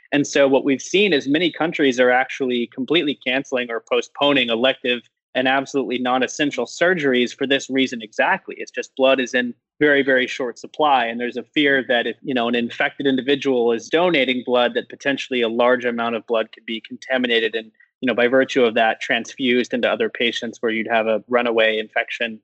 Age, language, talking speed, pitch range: 20-39, English, 195 wpm, 120-145 Hz